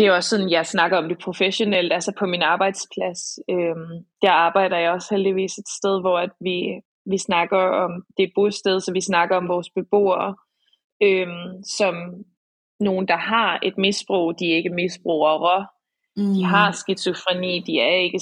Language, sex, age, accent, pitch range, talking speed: Danish, female, 20-39, native, 175-200 Hz, 175 wpm